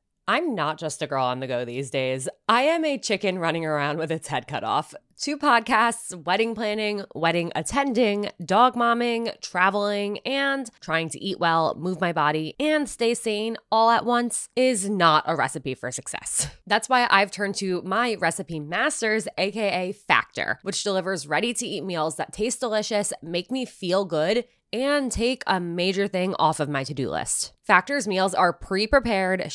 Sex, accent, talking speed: female, American, 175 wpm